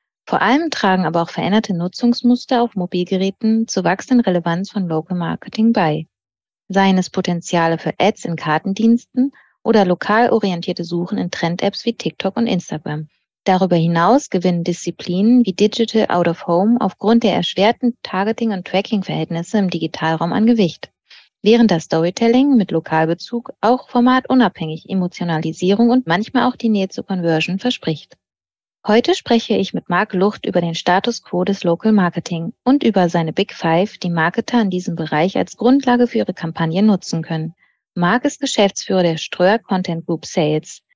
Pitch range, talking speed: 170-230 Hz, 150 wpm